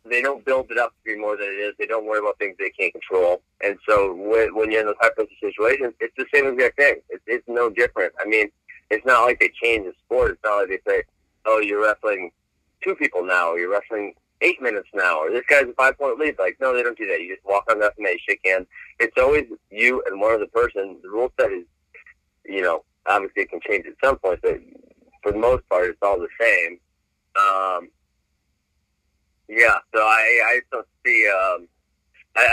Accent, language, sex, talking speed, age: American, English, male, 225 wpm, 30-49